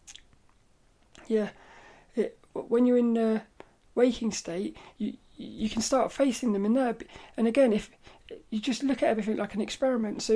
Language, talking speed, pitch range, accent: English, 155 wpm, 210-255 Hz, British